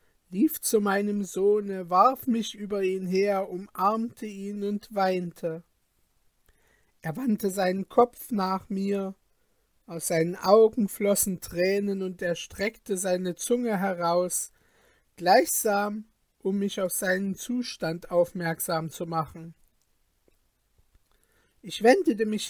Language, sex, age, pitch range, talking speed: German, male, 50-69, 180-220 Hz, 110 wpm